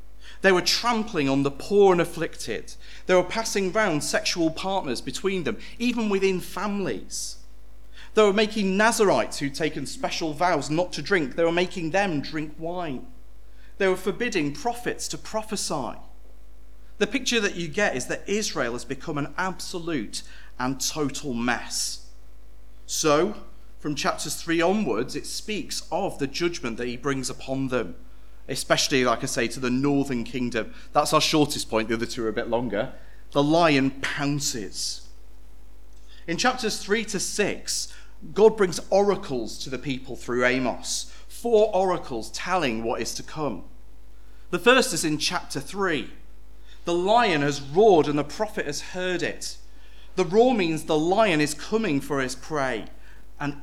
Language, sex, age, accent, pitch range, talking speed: English, male, 40-59, British, 115-185 Hz, 160 wpm